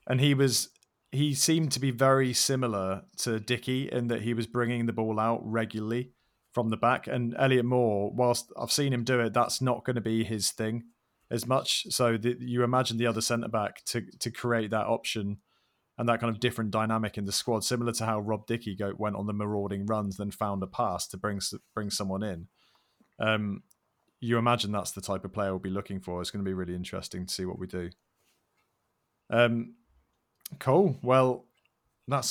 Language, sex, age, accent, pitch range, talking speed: English, male, 30-49, British, 110-135 Hz, 200 wpm